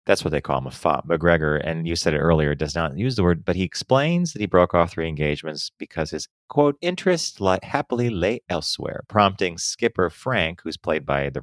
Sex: male